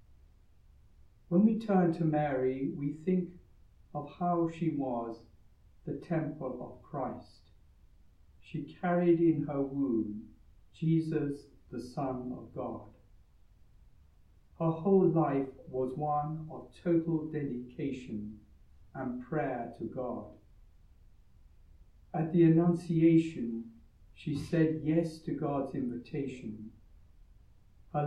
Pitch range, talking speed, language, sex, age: 105-160 Hz, 100 wpm, English, male, 60-79